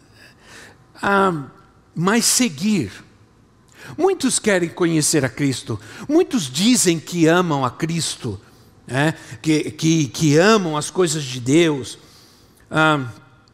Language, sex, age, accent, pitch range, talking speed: Portuguese, male, 60-79, Brazilian, 145-215 Hz, 100 wpm